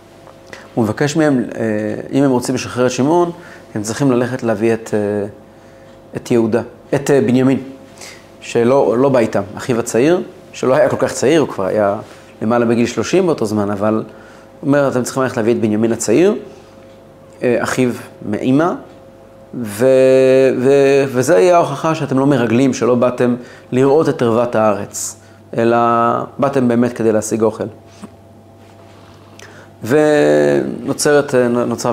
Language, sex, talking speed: Hebrew, male, 130 wpm